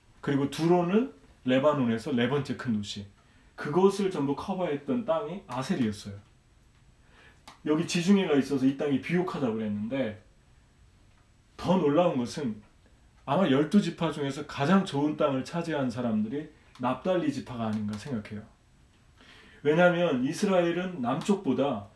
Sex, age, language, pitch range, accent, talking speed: male, 40-59, English, 120-190 Hz, Korean, 105 wpm